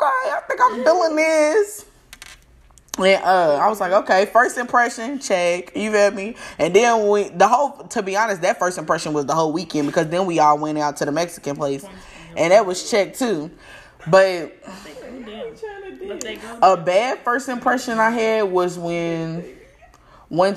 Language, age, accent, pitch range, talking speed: English, 20-39, American, 160-235 Hz, 165 wpm